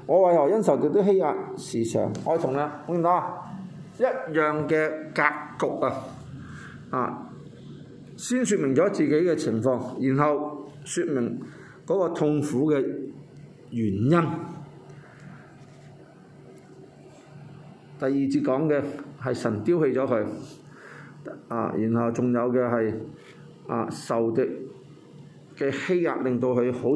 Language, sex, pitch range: Chinese, male, 135-175 Hz